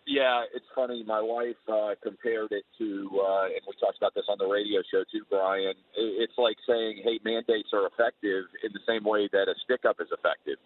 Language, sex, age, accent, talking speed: English, male, 50-69, American, 210 wpm